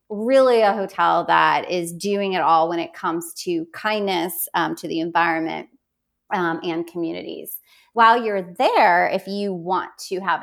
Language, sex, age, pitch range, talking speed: English, female, 30-49, 175-220 Hz, 160 wpm